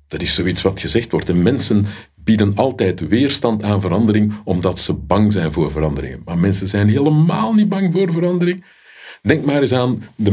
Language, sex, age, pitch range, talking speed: Dutch, male, 50-69, 80-120 Hz, 185 wpm